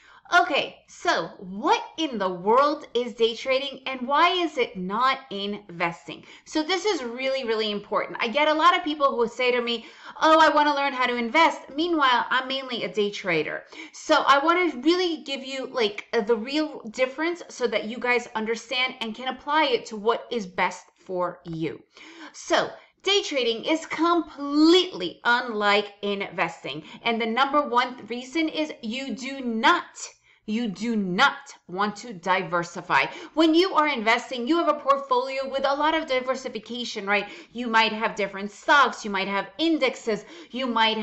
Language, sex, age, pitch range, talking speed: English, female, 30-49, 220-300 Hz, 175 wpm